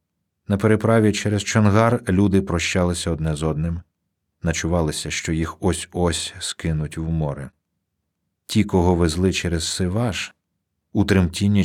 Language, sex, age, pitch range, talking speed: Ukrainian, male, 50-69, 80-100 Hz, 120 wpm